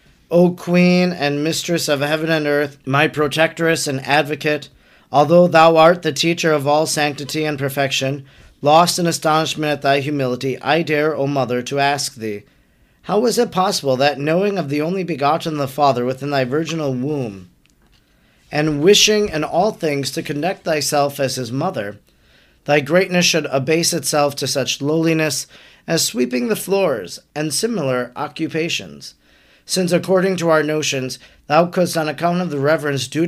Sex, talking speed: male, 160 wpm